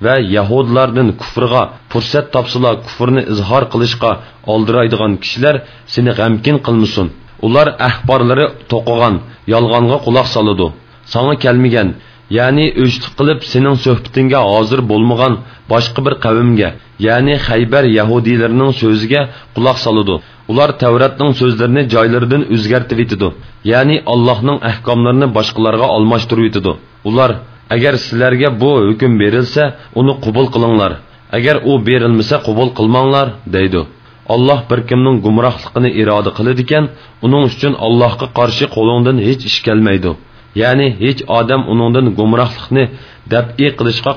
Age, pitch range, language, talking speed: 40-59, 110-130 Hz, English, 115 wpm